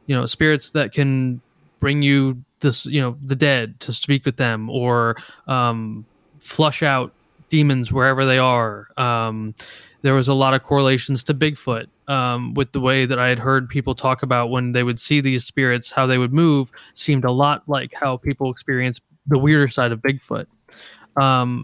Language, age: English, 20-39